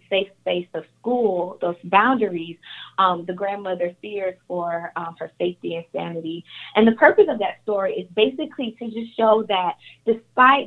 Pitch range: 175-220 Hz